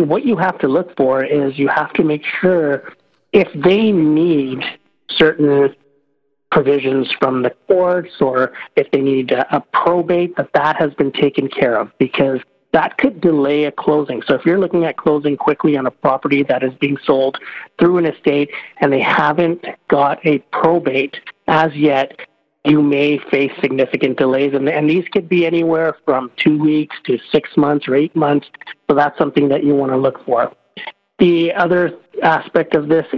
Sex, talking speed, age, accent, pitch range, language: male, 175 wpm, 50-69, American, 140-155 Hz, English